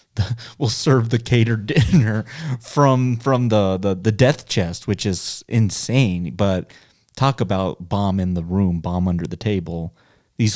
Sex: male